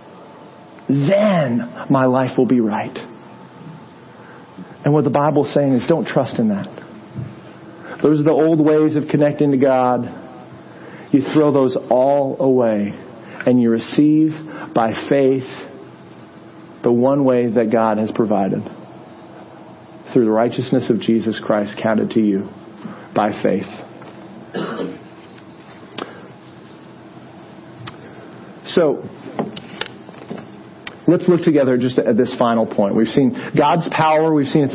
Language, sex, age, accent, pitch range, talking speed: English, male, 40-59, American, 125-160 Hz, 120 wpm